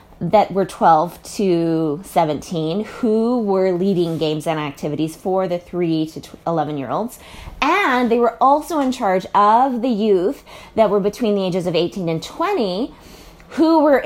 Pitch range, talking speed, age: 190-250 Hz, 160 wpm, 20-39